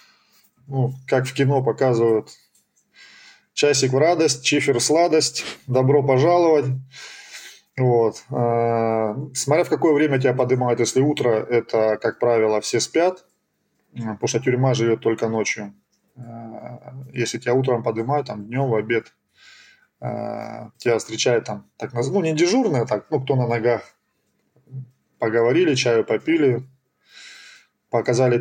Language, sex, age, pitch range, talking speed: Russian, male, 20-39, 115-140 Hz, 120 wpm